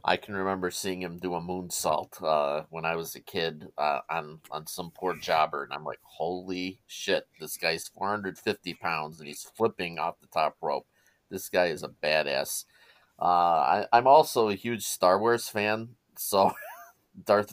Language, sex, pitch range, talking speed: English, male, 85-100 Hz, 175 wpm